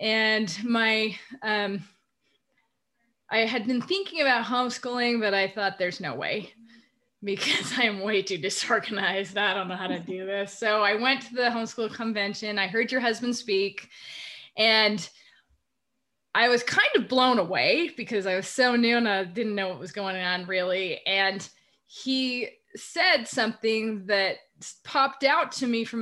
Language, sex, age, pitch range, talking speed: English, female, 20-39, 205-255 Hz, 160 wpm